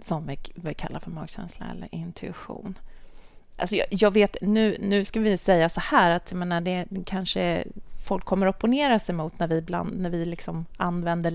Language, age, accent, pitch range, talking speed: Swedish, 30-49, native, 160-195 Hz, 185 wpm